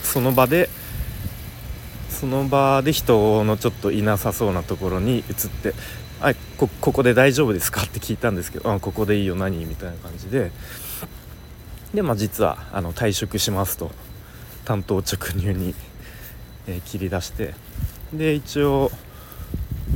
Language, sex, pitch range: Japanese, male, 90-110 Hz